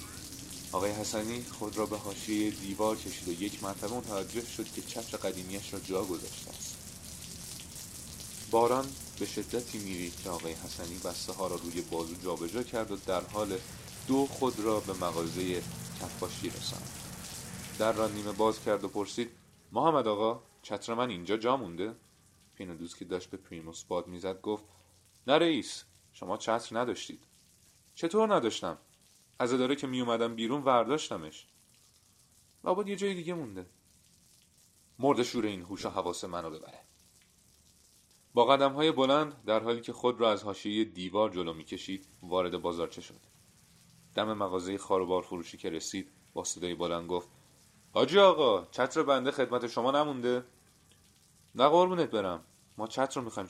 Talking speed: 145 wpm